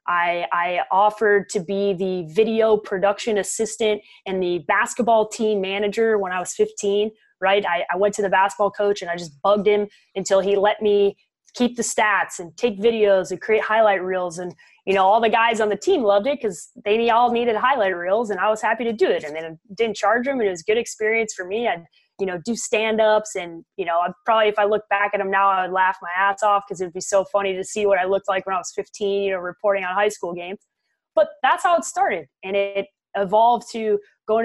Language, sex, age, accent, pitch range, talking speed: English, female, 20-39, American, 190-220 Hz, 235 wpm